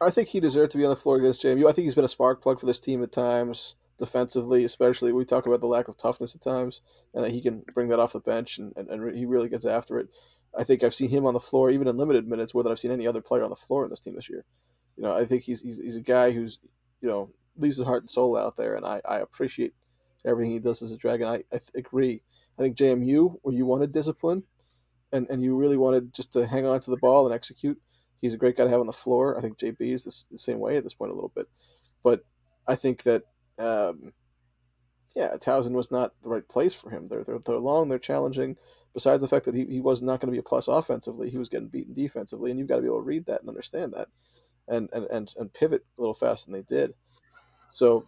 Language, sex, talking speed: English, male, 270 wpm